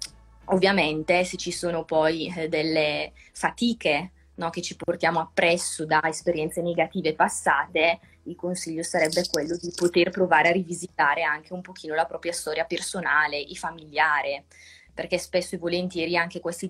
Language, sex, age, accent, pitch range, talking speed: Italian, female, 20-39, native, 160-180 Hz, 145 wpm